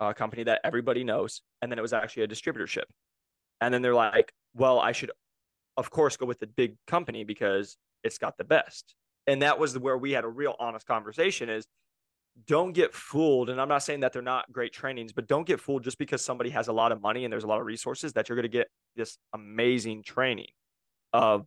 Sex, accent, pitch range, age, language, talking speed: male, American, 110-130 Hz, 20-39, English, 225 wpm